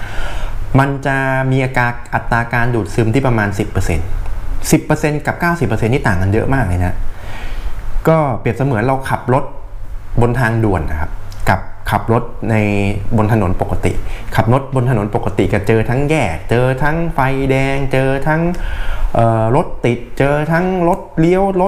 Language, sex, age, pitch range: Thai, male, 20-39, 100-135 Hz